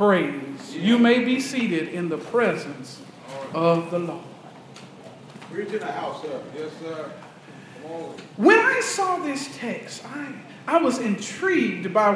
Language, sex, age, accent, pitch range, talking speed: English, male, 40-59, American, 215-355 Hz, 105 wpm